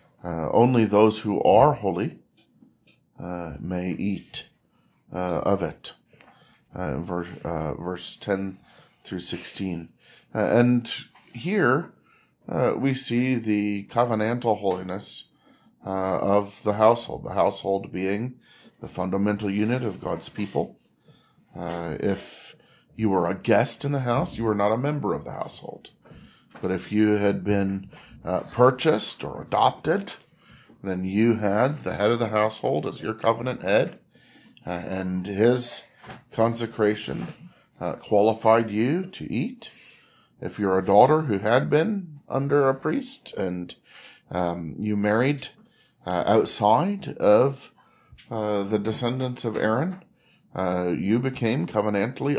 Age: 40-59